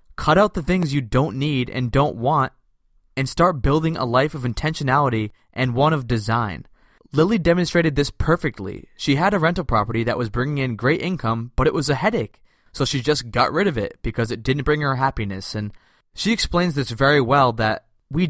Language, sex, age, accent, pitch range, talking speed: English, male, 20-39, American, 115-150 Hz, 205 wpm